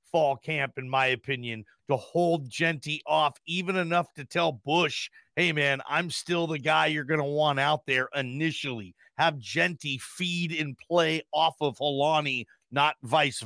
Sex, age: male, 40-59